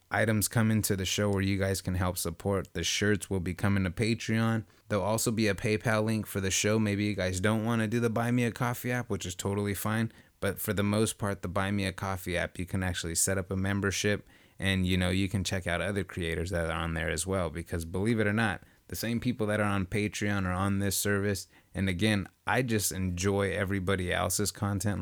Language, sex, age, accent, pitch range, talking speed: English, male, 30-49, American, 90-110 Hz, 240 wpm